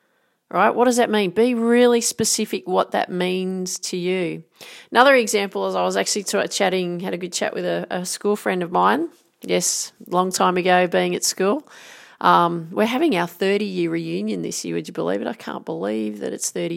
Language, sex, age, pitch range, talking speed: English, female, 40-59, 165-200 Hz, 205 wpm